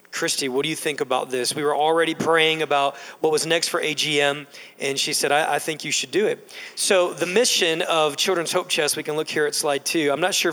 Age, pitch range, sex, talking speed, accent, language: 40-59, 140-175 Hz, male, 250 wpm, American, English